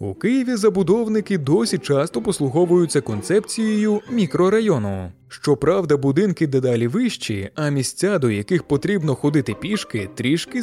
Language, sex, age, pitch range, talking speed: Ukrainian, male, 20-39, 130-190 Hz, 115 wpm